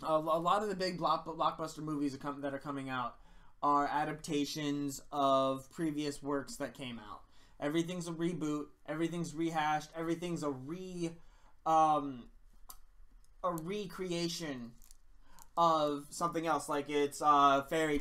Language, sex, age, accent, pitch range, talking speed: English, male, 20-39, American, 140-170 Hz, 125 wpm